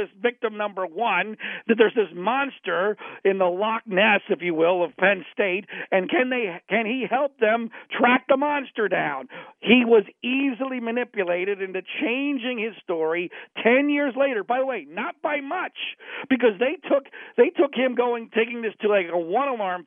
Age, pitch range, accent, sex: 50-69, 185-250 Hz, American, male